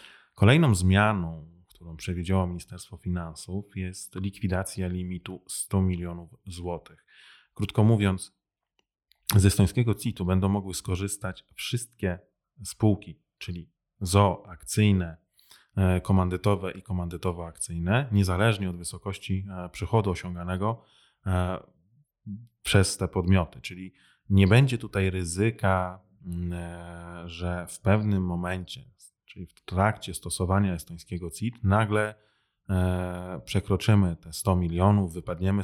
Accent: native